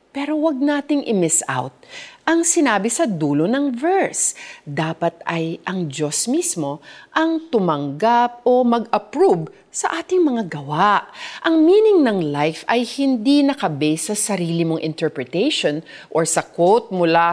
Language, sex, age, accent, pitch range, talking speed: Filipino, female, 40-59, native, 160-260 Hz, 135 wpm